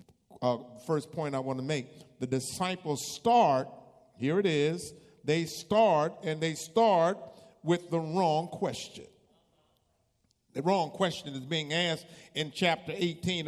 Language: English